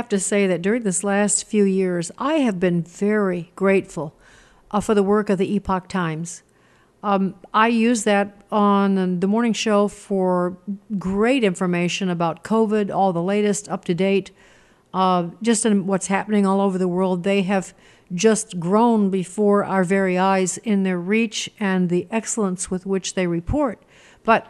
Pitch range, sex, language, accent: 185-220 Hz, female, English, American